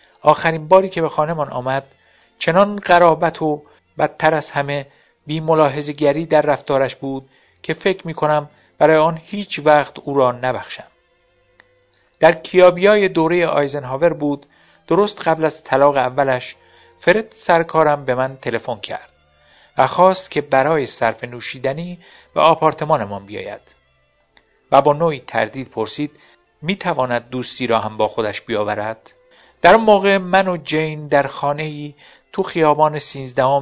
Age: 50-69